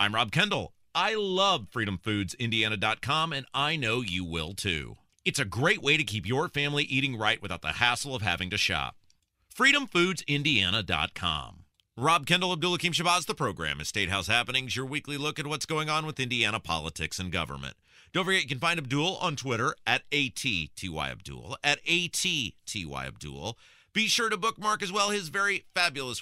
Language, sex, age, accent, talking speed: English, male, 40-59, American, 165 wpm